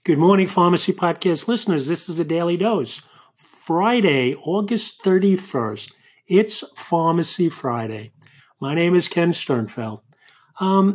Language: English